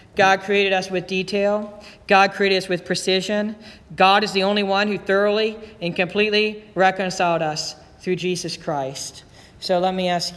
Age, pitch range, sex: 40-59, 165-200 Hz, male